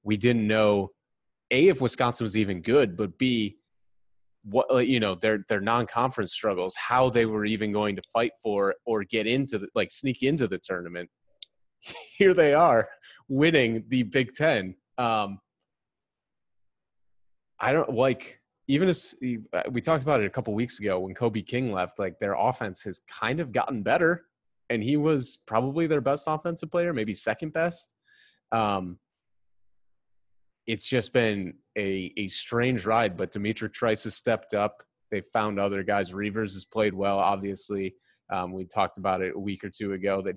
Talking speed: 170 wpm